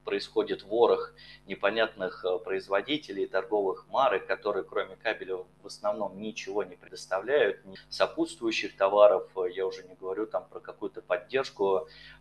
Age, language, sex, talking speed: 30-49, Russian, male, 120 wpm